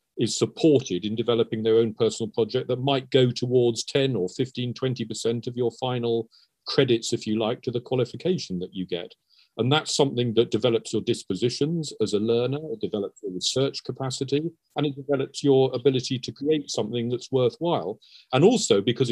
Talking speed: 180 wpm